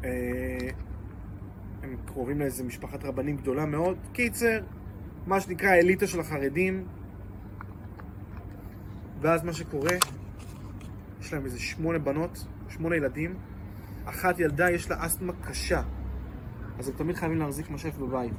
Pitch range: 100-160 Hz